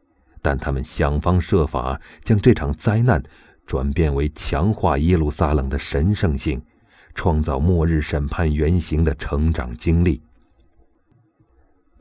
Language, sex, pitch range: Chinese, male, 75-90 Hz